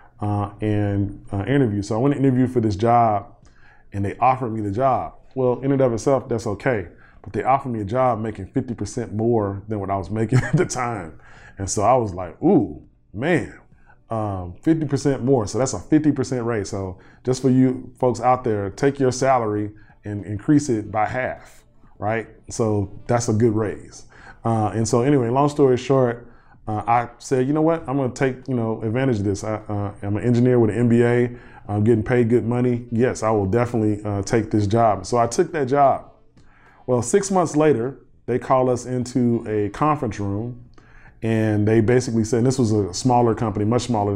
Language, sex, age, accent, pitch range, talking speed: English, male, 20-39, American, 105-130 Hz, 200 wpm